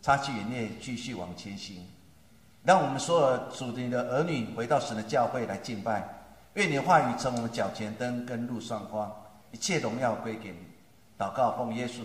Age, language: 50-69, Chinese